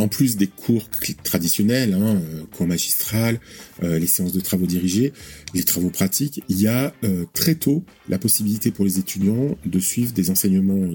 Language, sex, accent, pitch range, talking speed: French, male, French, 95-135 Hz, 175 wpm